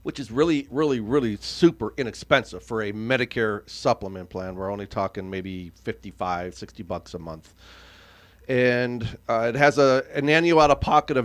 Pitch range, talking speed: 100-130 Hz, 150 wpm